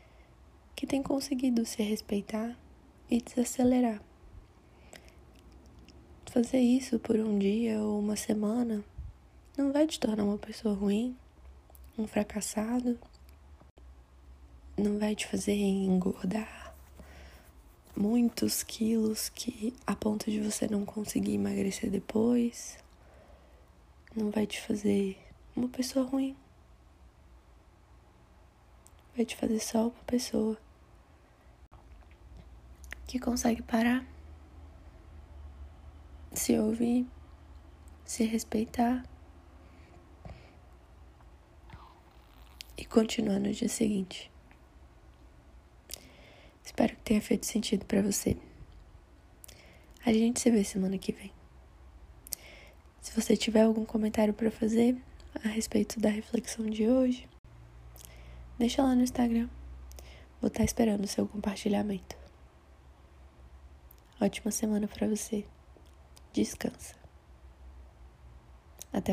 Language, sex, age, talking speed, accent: Portuguese, female, 20-39, 95 wpm, Brazilian